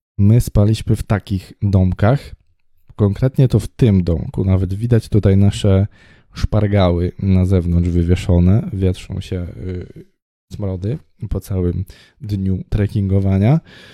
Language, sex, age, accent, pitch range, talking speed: Polish, male, 20-39, native, 95-115 Hz, 110 wpm